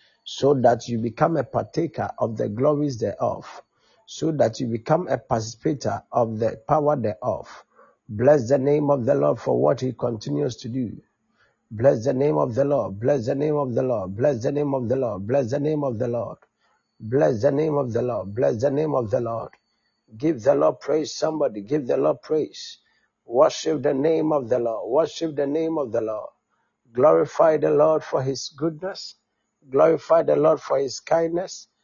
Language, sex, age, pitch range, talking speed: English, male, 60-79, 125-155 Hz, 190 wpm